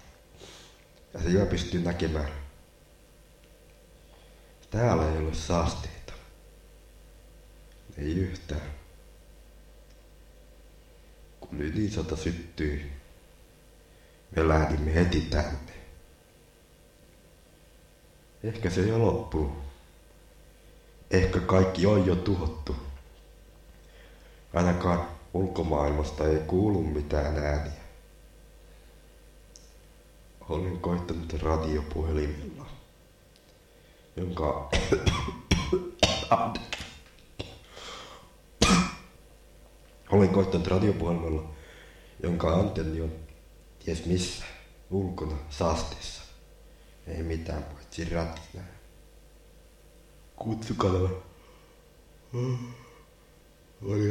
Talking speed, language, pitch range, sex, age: 60 wpm, Finnish, 75-95 Hz, male, 60-79